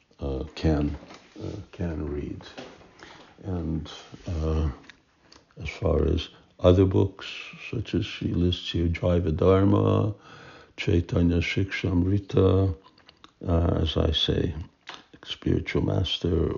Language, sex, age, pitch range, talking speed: Hungarian, male, 60-79, 80-90 Hz, 90 wpm